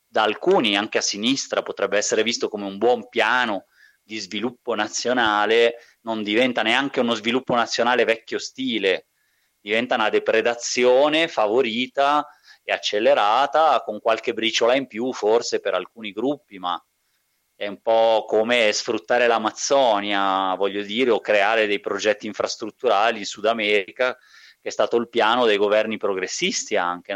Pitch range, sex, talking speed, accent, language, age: 105-130 Hz, male, 140 wpm, native, Italian, 30-49